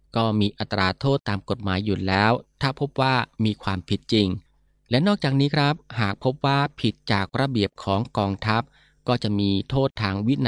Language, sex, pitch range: Thai, male, 95-125 Hz